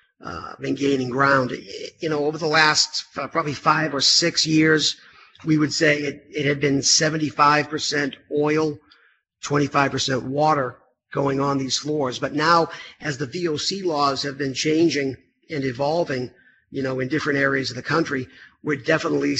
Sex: male